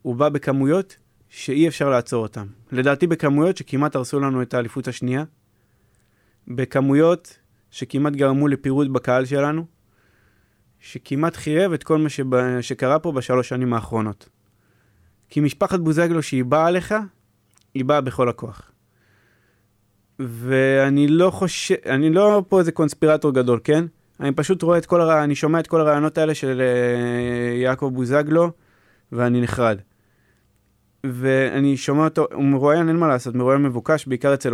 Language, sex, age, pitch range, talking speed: Hebrew, male, 20-39, 120-155 Hz, 140 wpm